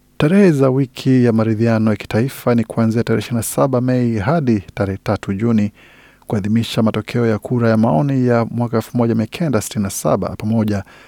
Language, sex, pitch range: Swahili, male, 110-135 Hz